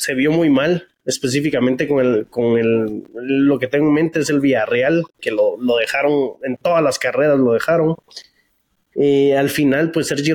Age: 20-39